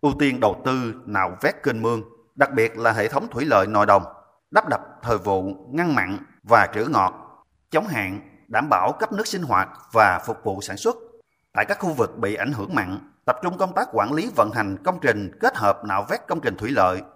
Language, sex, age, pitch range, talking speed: Vietnamese, male, 30-49, 105-140 Hz, 225 wpm